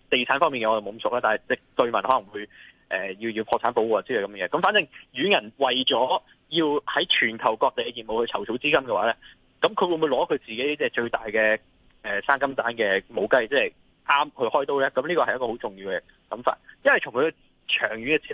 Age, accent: 20-39, native